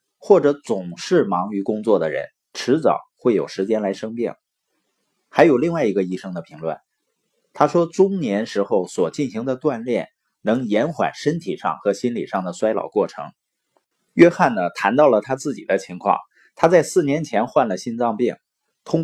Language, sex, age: Chinese, male, 30-49